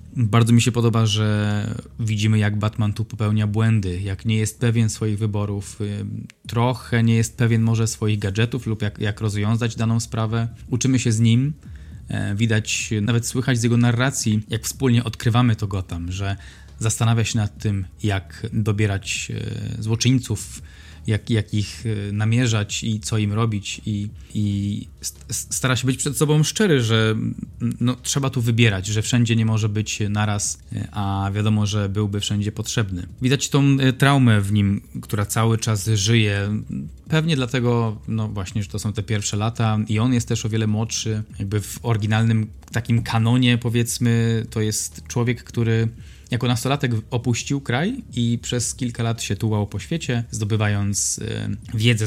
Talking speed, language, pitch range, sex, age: 155 wpm, Polish, 105-120 Hz, male, 20-39